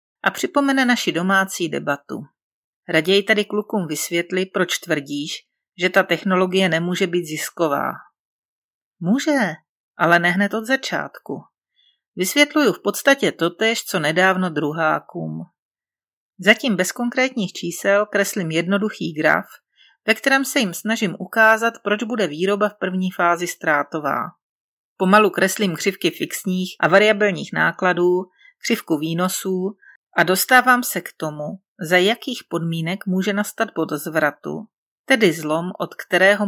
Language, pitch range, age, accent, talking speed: Czech, 170-220 Hz, 40-59, native, 125 wpm